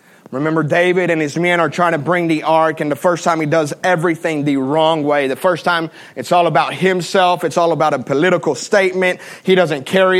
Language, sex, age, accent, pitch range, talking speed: English, male, 30-49, American, 155-180 Hz, 220 wpm